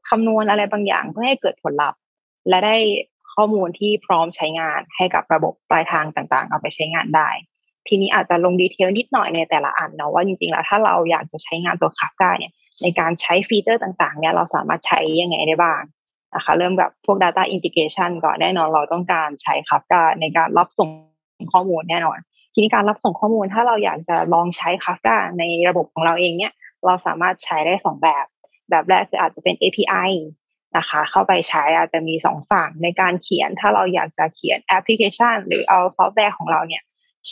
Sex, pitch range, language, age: female, 165-205 Hz, Thai, 20-39